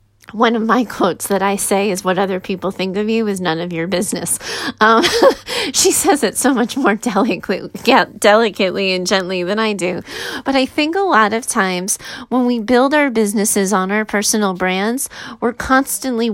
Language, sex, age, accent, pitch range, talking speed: English, female, 30-49, American, 185-240 Hz, 185 wpm